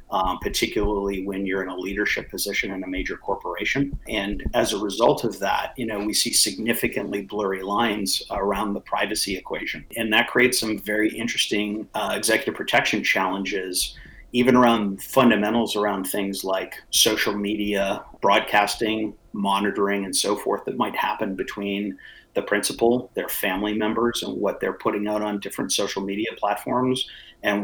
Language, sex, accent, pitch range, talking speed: English, male, American, 100-110 Hz, 155 wpm